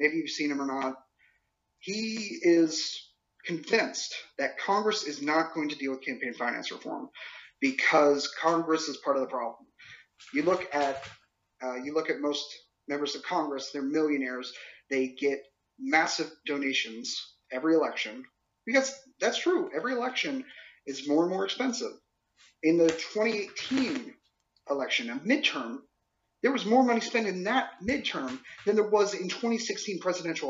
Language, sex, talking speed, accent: English, male, 150 wpm, American